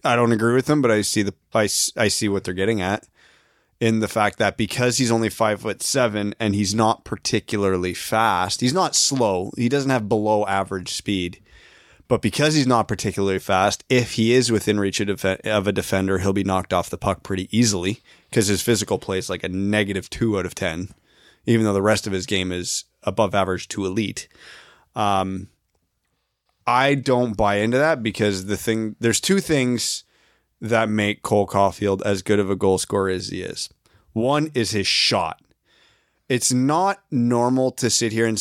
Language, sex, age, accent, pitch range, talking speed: English, male, 20-39, American, 100-120 Hz, 190 wpm